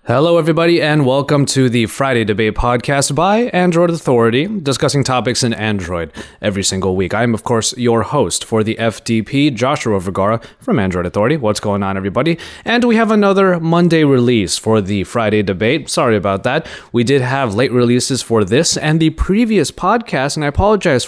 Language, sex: English, male